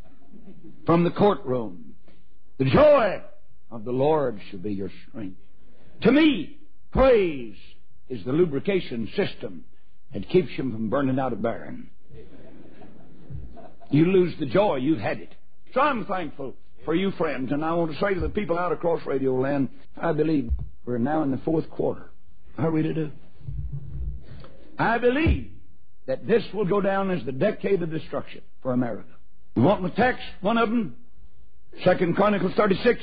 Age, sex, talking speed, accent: 60-79, male, 165 wpm, American